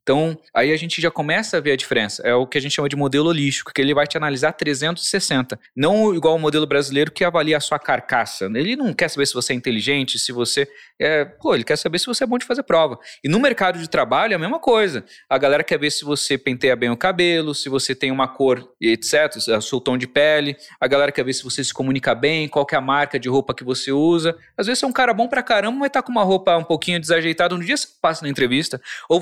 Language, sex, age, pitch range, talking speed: Portuguese, male, 20-39, 135-180 Hz, 265 wpm